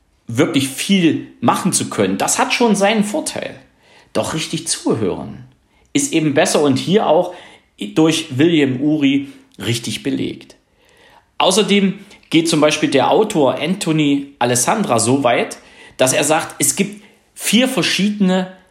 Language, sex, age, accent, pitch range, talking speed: German, male, 50-69, German, 130-185 Hz, 130 wpm